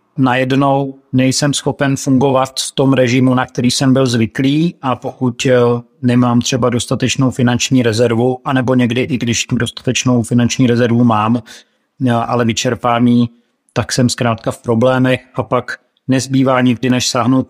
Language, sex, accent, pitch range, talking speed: Czech, male, native, 120-135 Hz, 135 wpm